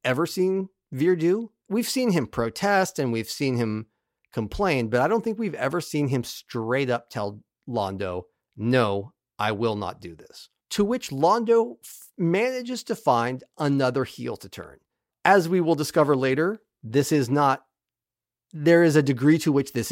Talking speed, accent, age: 170 wpm, American, 40-59